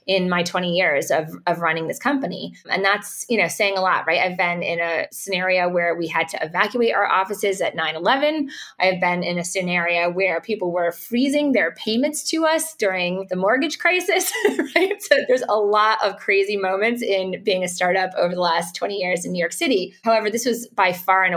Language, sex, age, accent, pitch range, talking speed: English, female, 20-39, American, 175-220 Hz, 215 wpm